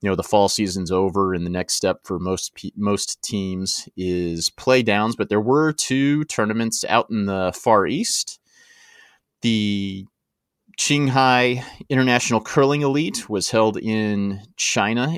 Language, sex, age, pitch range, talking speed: English, male, 30-49, 90-110 Hz, 140 wpm